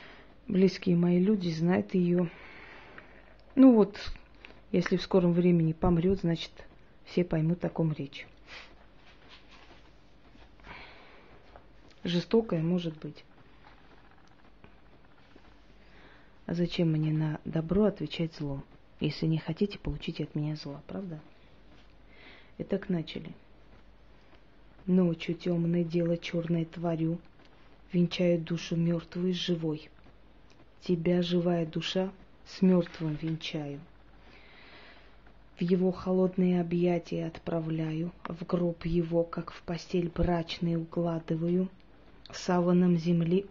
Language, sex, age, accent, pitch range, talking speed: Russian, female, 30-49, native, 165-180 Hz, 95 wpm